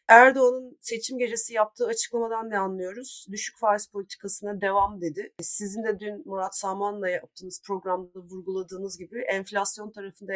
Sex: female